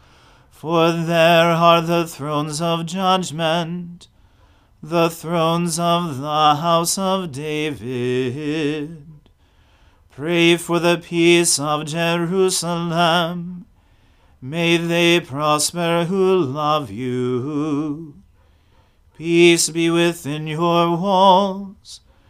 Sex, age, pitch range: male, 40-59, 145-170 Hz